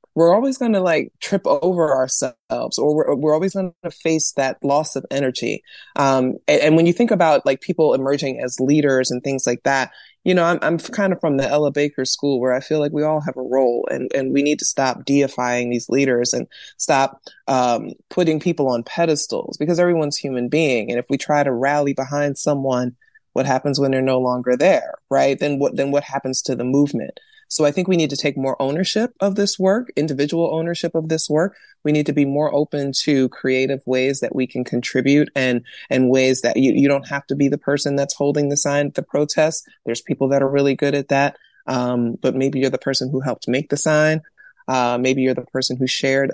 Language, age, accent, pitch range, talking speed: English, 20-39, American, 130-155 Hz, 225 wpm